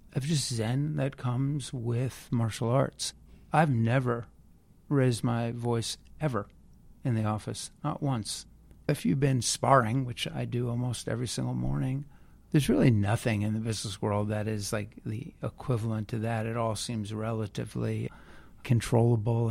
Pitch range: 110-130 Hz